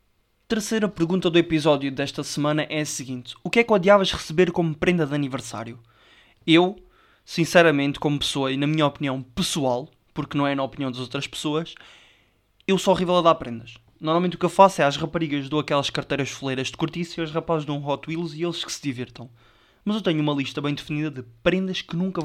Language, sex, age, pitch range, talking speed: Portuguese, male, 20-39, 125-180 Hz, 215 wpm